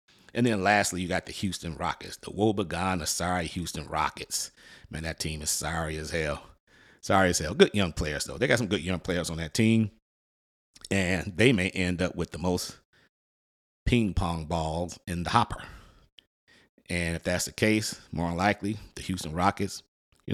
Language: English